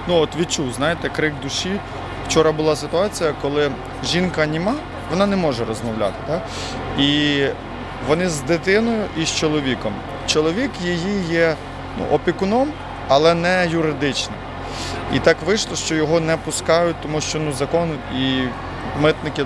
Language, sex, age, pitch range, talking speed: Ukrainian, male, 30-49, 135-170 Hz, 140 wpm